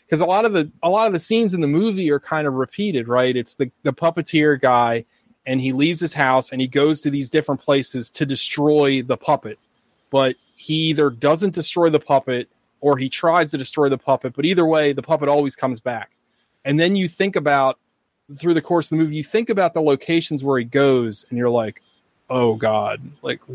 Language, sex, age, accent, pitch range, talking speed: English, male, 20-39, American, 125-155 Hz, 210 wpm